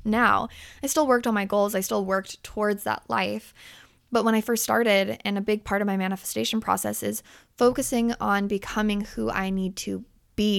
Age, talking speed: 20-39, 200 wpm